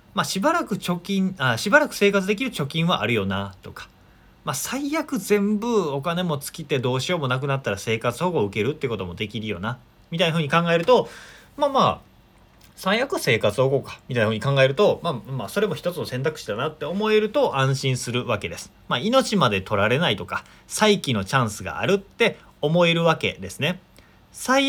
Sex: male